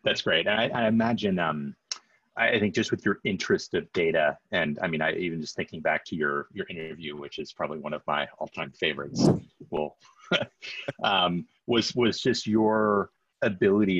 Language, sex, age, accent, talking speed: English, male, 30-49, American, 180 wpm